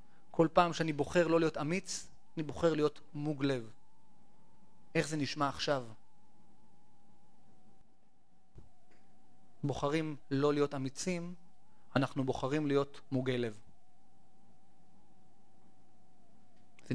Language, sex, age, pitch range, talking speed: Hebrew, male, 30-49, 145-210 Hz, 90 wpm